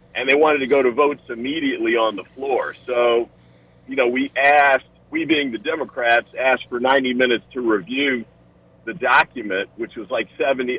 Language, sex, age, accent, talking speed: English, male, 50-69, American, 180 wpm